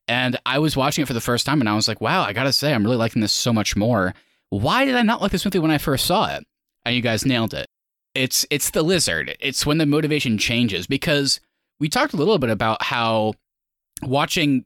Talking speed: 240 wpm